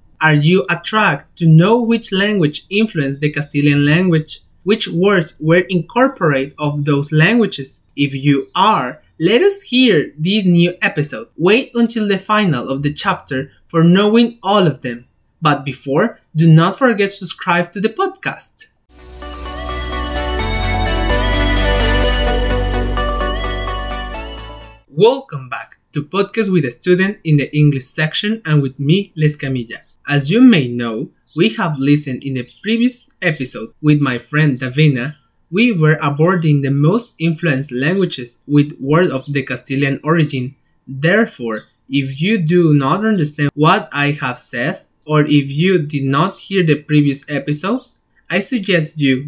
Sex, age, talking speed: male, 20-39, 140 wpm